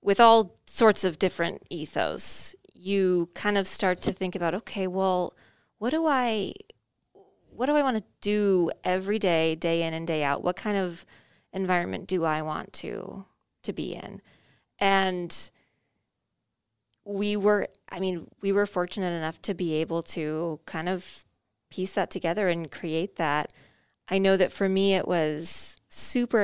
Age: 20-39